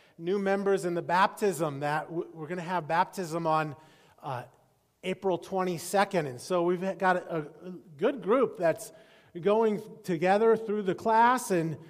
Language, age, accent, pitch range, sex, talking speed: English, 30-49, American, 185-225 Hz, male, 145 wpm